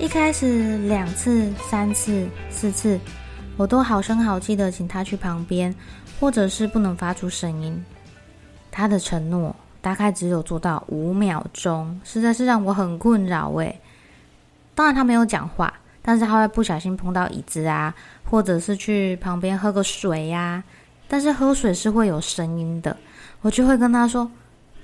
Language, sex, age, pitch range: Chinese, female, 20-39, 175-225 Hz